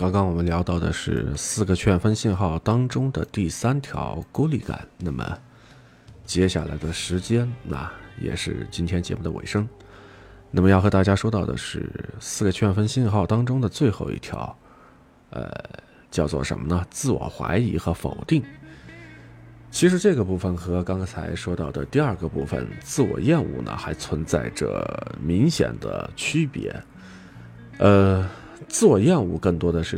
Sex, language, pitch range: male, Chinese, 85-115 Hz